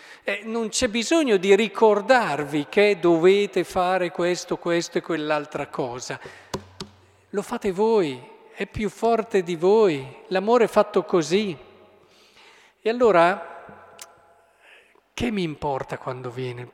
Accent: native